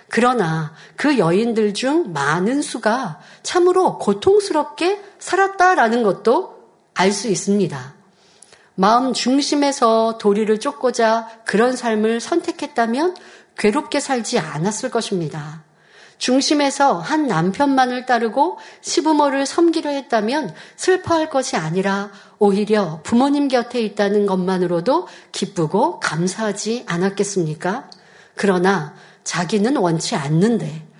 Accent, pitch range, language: native, 190-275 Hz, Korean